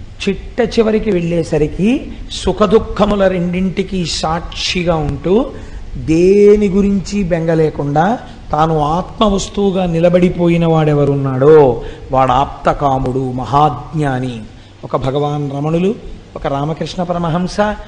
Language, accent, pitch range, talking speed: Telugu, native, 150-210 Hz, 80 wpm